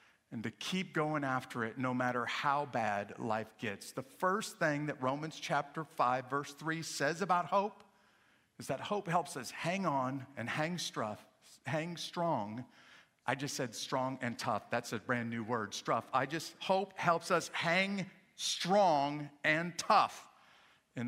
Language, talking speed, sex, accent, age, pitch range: English, 165 wpm, male, American, 50-69, 135-185 Hz